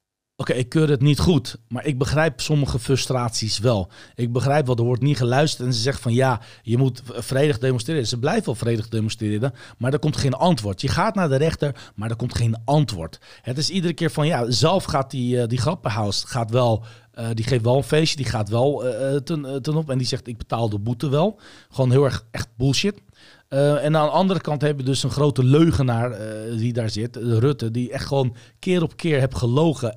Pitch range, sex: 120-150 Hz, male